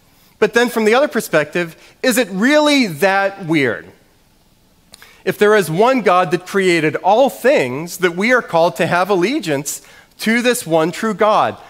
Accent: American